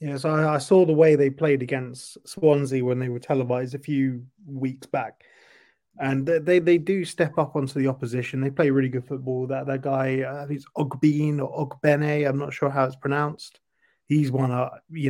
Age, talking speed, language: 30-49, 205 wpm, English